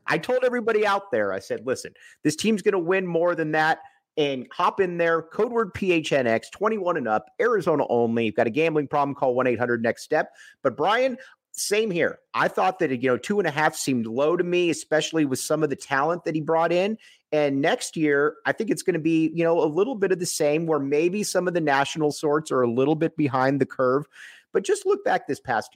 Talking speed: 225 wpm